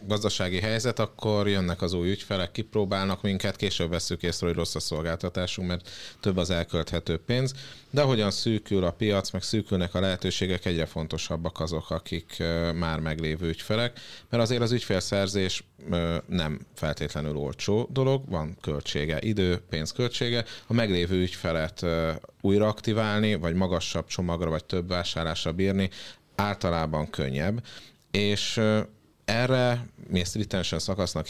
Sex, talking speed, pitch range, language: male, 130 wpm, 80-105 Hz, Hungarian